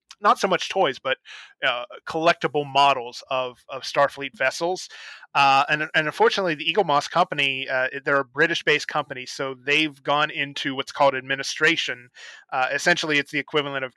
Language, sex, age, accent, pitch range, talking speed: English, male, 30-49, American, 130-155 Hz, 170 wpm